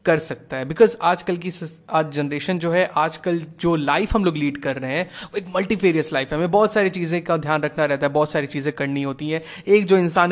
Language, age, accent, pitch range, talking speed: Hindi, 20-39, native, 145-170 Hz, 250 wpm